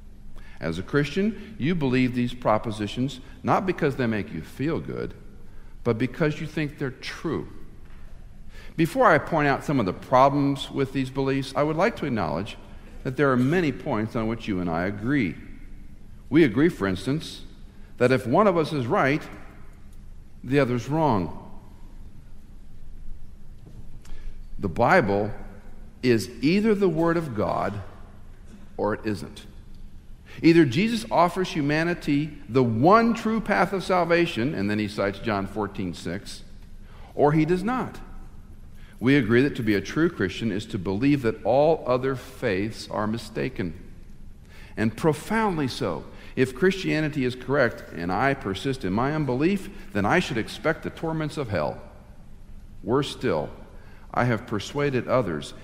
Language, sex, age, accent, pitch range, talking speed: English, male, 60-79, American, 100-150 Hz, 150 wpm